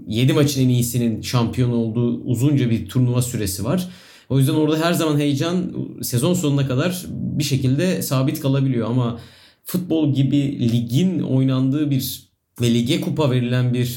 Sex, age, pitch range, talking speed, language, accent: male, 30-49, 120-150 Hz, 150 wpm, Turkish, native